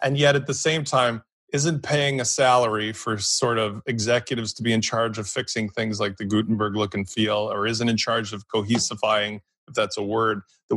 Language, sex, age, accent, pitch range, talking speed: English, male, 30-49, American, 110-145 Hz, 210 wpm